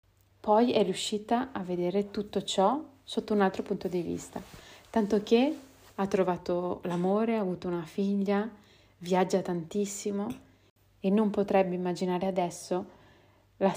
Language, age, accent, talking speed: Italian, 30-49, native, 130 wpm